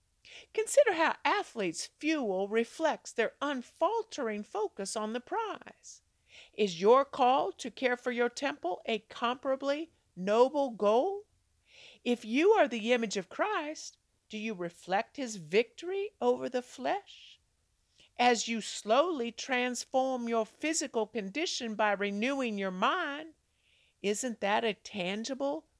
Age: 50-69